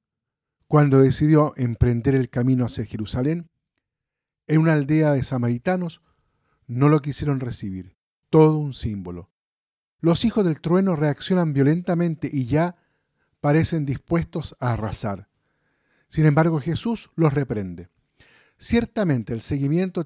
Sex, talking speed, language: male, 115 wpm, Spanish